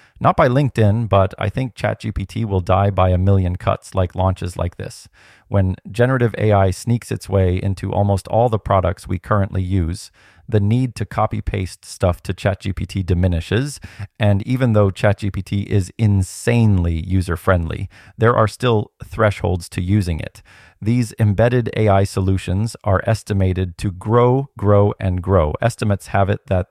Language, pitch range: English, 95-110 Hz